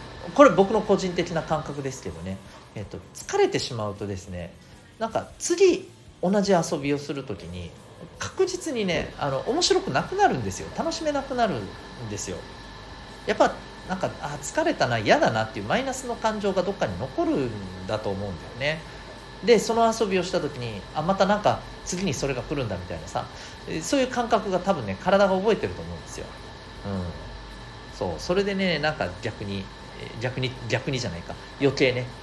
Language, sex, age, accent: Japanese, male, 40-59, native